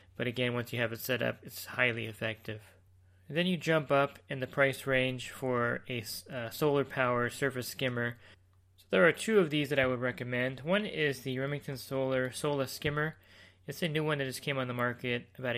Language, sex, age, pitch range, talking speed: English, male, 20-39, 115-135 Hz, 210 wpm